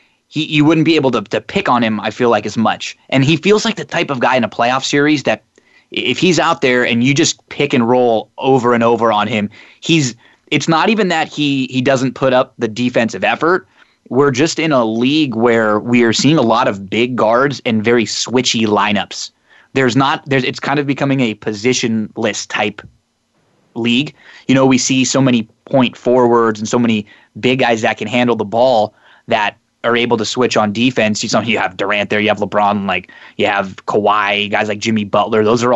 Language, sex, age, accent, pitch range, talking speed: English, male, 20-39, American, 115-140 Hz, 215 wpm